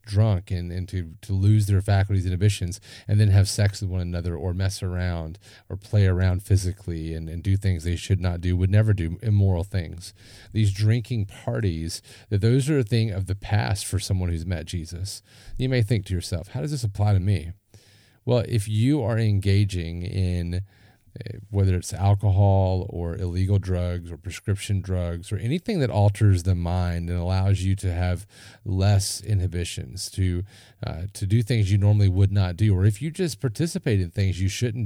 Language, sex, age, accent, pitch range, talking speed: English, male, 30-49, American, 95-110 Hz, 190 wpm